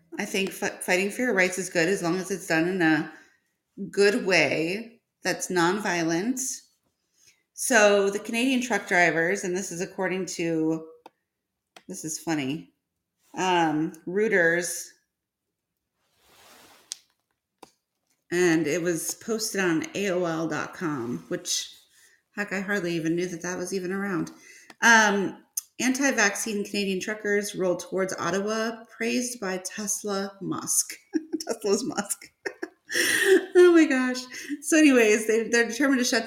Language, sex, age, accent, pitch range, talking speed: English, female, 30-49, American, 170-220 Hz, 125 wpm